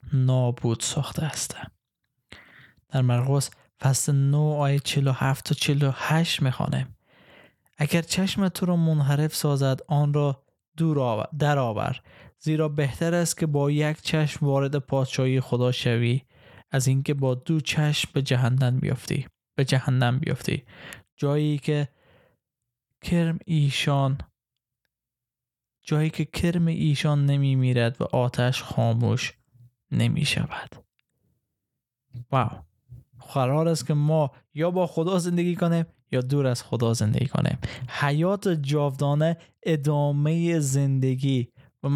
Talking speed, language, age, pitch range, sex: 110 wpm, Persian, 20-39, 125-155 Hz, male